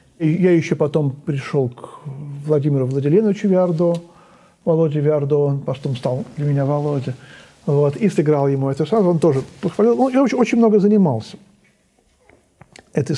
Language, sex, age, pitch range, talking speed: Russian, male, 50-69, 140-165 Hz, 145 wpm